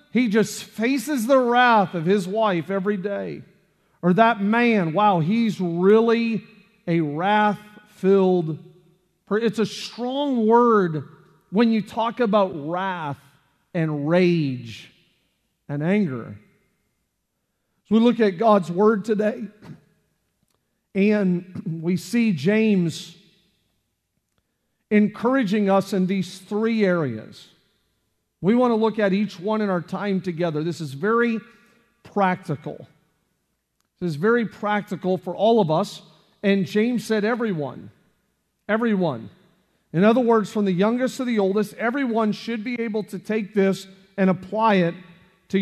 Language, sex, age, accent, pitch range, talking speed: English, male, 40-59, American, 180-220 Hz, 130 wpm